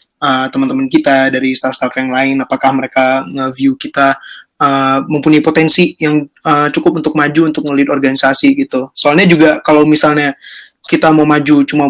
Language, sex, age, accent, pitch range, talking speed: Indonesian, male, 20-39, native, 140-165 Hz, 155 wpm